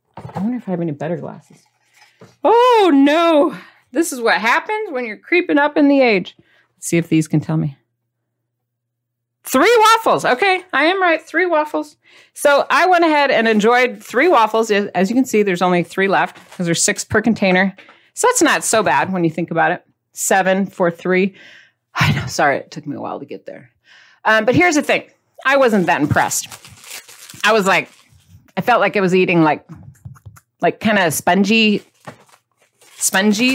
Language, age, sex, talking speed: English, 40-59, female, 190 wpm